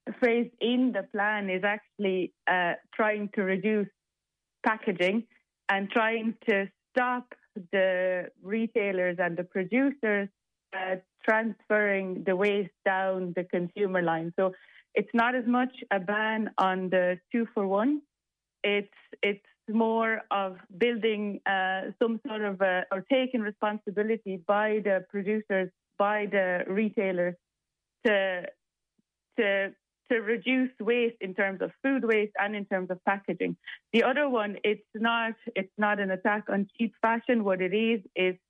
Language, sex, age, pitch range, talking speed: English, female, 30-49, 190-225 Hz, 140 wpm